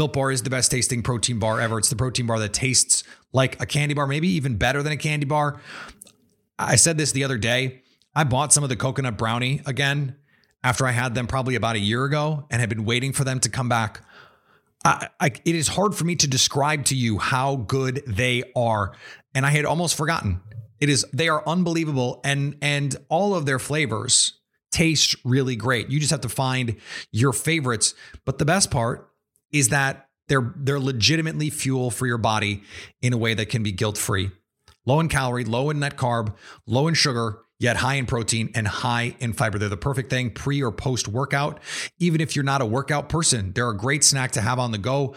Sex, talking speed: male, 210 wpm